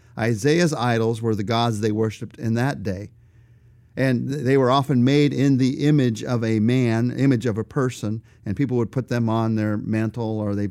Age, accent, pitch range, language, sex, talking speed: 50-69, American, 115-130 Hz, English, male, 195 wpm